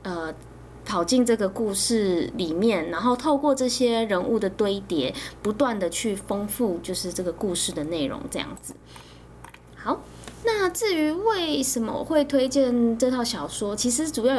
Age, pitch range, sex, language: 20-39, 195-270 Hz, female, Chinese